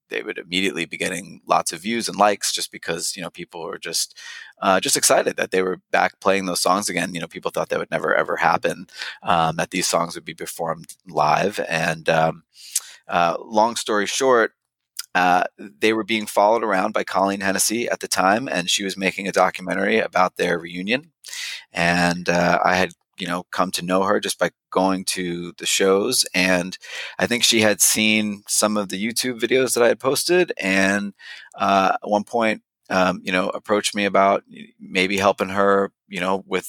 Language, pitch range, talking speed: English, 95-115 Hz, 195 wpm